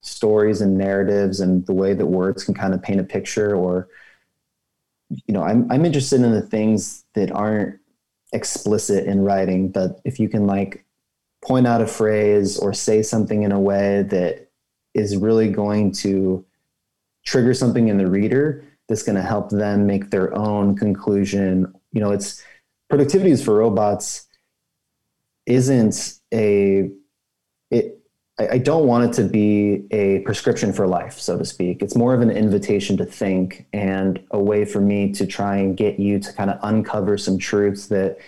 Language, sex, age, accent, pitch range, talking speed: English, male, 30-49, American, 95-110 Hz, 170 wpm